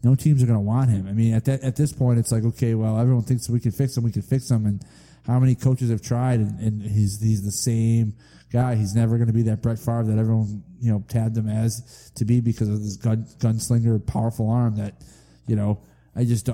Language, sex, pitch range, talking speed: English, male, 110-130 Hz, 250 wpm